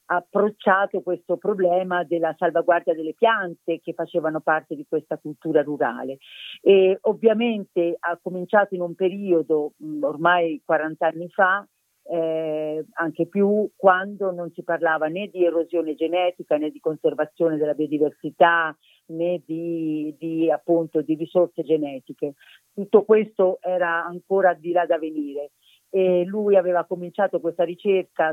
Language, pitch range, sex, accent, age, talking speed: Italian, 155-185 Hz, female, native, 40-59, 130 wpm